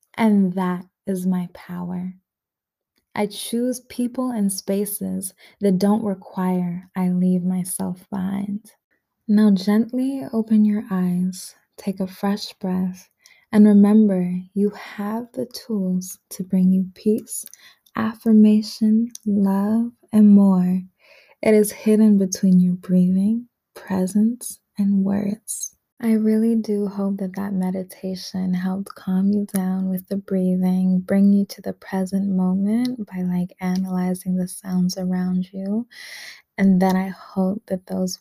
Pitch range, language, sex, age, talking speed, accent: 185-205 Hz, English, female, 20-39, 130 wpm, American